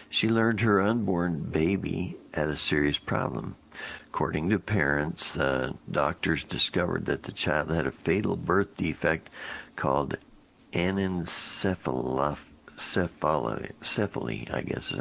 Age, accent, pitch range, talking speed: 60-79, American, 65-80 Hz, 110 wpm